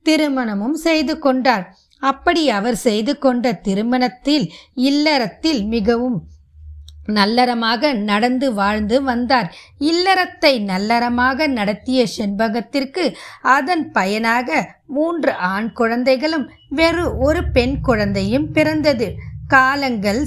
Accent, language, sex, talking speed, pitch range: native, Tamil, female, 85 wpm, 225-285 Hz